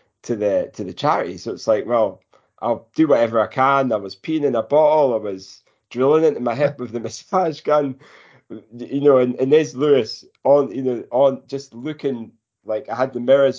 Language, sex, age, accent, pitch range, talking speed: English, male, 20-39, British, 105-140 Hz, 210 wpm